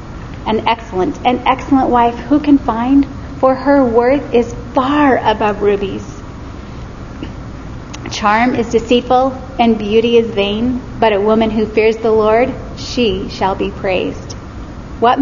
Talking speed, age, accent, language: 135 wpm, 30-49, American, English